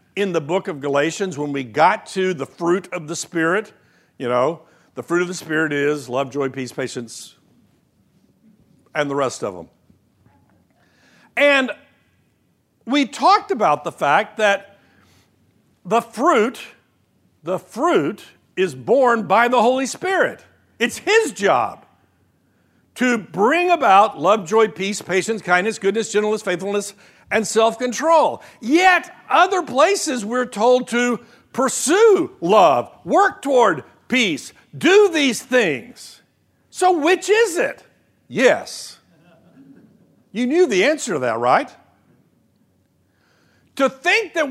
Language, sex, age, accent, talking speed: English, male, 60-79, American, 125 wpm